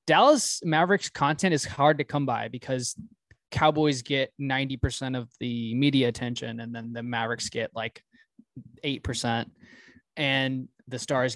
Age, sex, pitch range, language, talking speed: 20-39, male, 120-150 Hz, English, 135 wpm